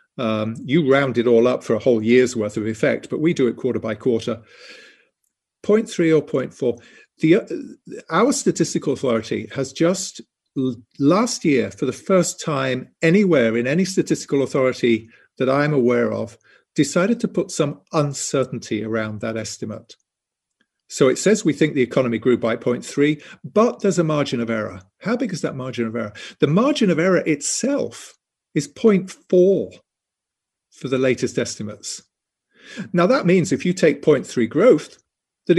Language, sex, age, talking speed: English, male, 50-69, 170 wpm